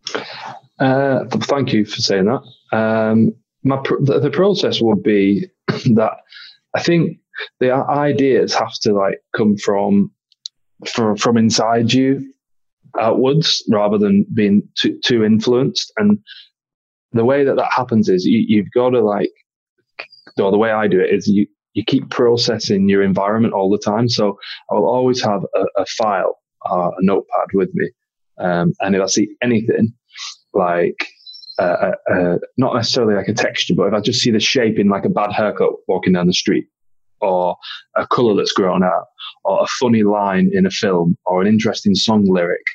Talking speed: 165 wpm